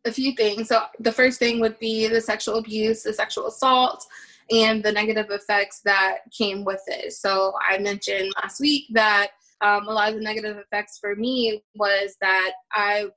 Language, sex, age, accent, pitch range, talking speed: English, female, 20-39, American, 190-230 Hz, 185 wpm